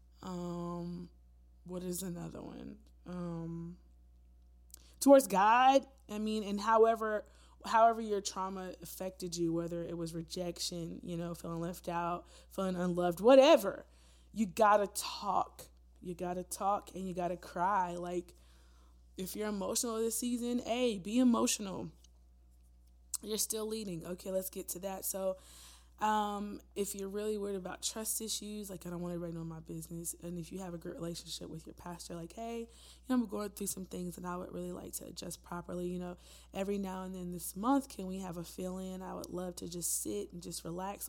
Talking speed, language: 180 wpm, English